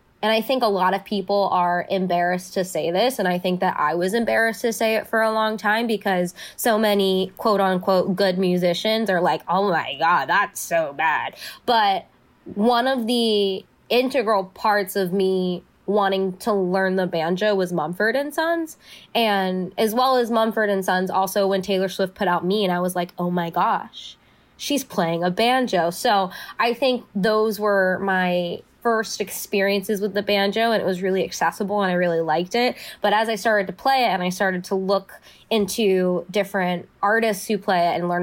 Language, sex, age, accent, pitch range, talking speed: English, female, 20-39, American, 180-220 Hz, 195 wpm